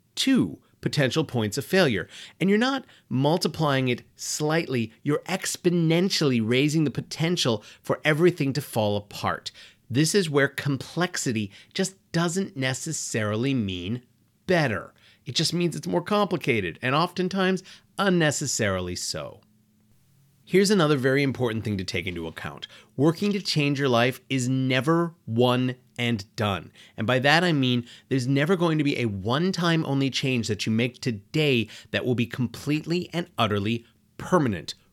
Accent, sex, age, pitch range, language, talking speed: American, male, 30-49, 115-165 Hz, English, 145 wpm